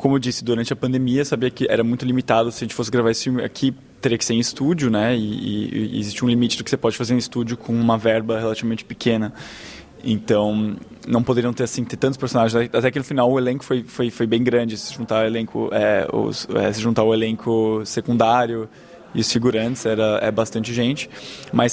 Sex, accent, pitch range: male, Brazilian, 115-135 Hz